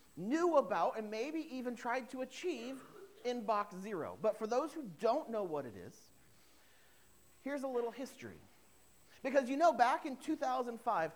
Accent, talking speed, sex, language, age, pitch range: American, 160 wpm, male, English, 40-59, 195-280 Hz